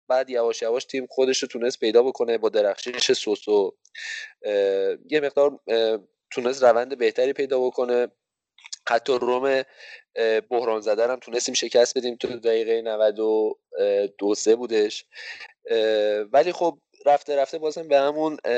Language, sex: Persian, male